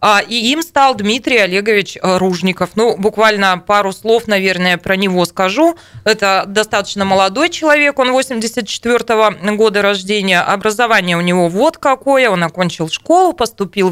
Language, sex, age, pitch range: Russian, female, 20-39, 180-225 Hz